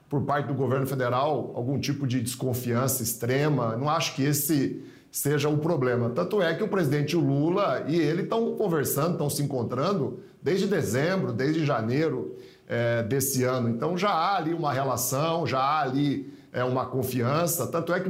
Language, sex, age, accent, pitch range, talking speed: Portuguese, male, 50-69, Brazilian, 130-175 Hz, 165 wpm